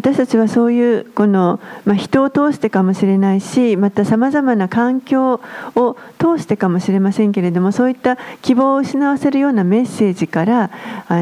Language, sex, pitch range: Japanese, female, 185-245 Hz